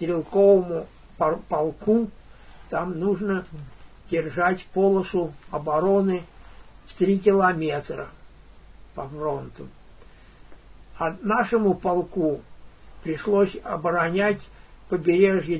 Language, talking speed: Russian, 70 wpm